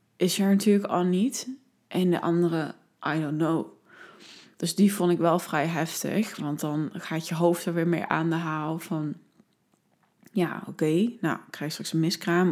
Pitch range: 175-205 Hz